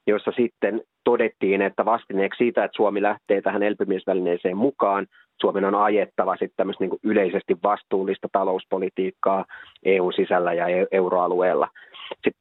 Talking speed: 120 wpm